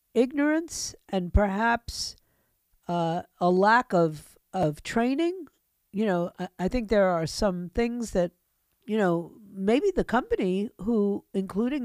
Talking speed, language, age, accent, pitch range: 130 wpm, English, 50-69, American, 180-240 Hz